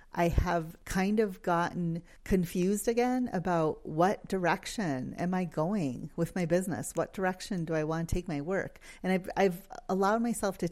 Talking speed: 175 wpm